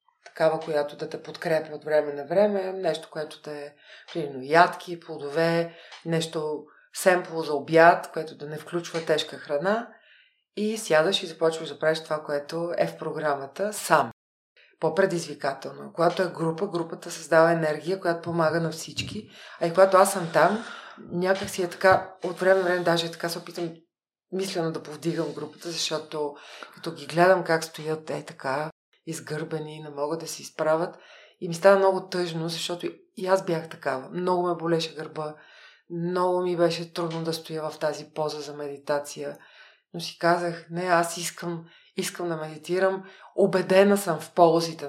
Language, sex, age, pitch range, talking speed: Bulgarian, female, 40-59, 155-185 Hz, 165 wpm